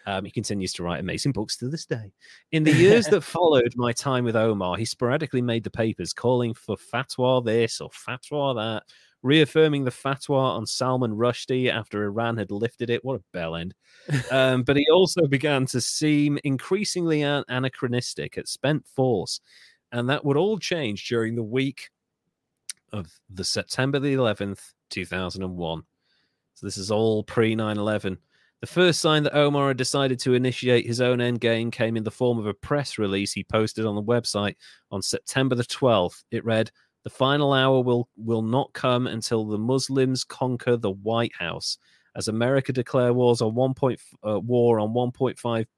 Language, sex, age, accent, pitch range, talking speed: English, male, 30-49, British, 110-135 Hz, 170 wpm